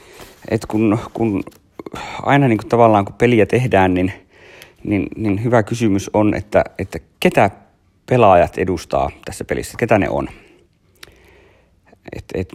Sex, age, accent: male, 30-49, native